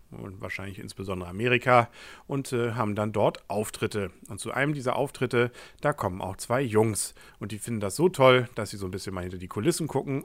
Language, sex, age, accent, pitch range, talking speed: German, male, 40-59, German, 105-125 Hz, 210 wpm